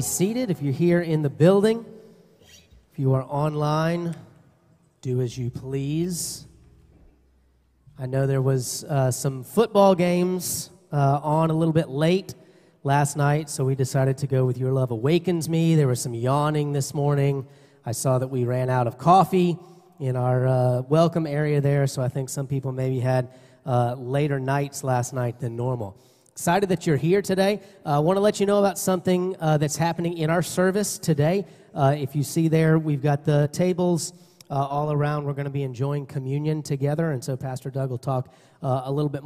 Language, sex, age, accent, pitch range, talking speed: English, male, 30-49, American, 130-165 Hz, 190 wpm